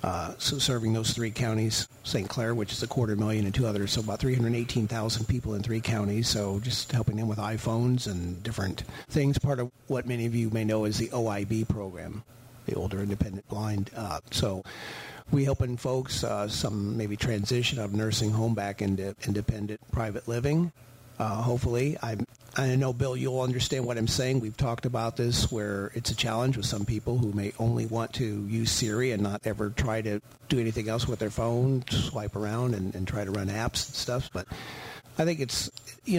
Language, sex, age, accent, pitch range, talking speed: English, male, 50-69, American, 105-125 Hz, 200 wpm